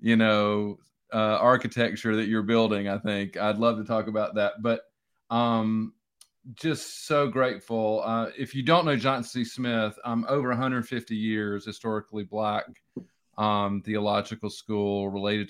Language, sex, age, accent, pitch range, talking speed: English, male, 40-59, American, 105-120 Hz, 150 wpm